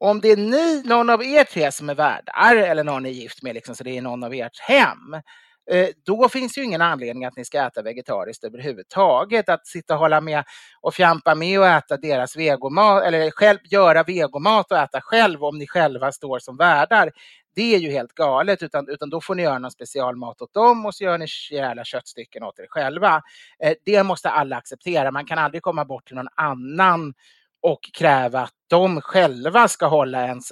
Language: English